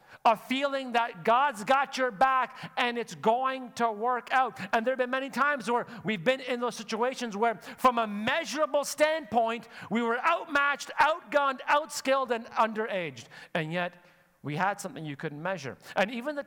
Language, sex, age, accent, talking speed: English, male, 40-59, American, 175 wpm